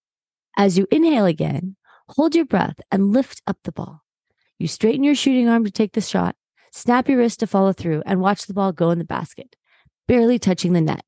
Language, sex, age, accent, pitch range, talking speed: English, female, 30-49, American, 180-240 Hz, 210 wpm